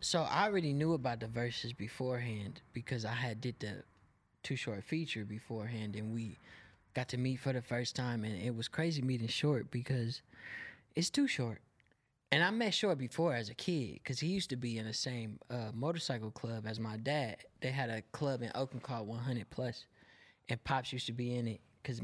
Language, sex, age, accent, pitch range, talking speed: English, male, 20-39, American, 115-150 Hz, 205 wpm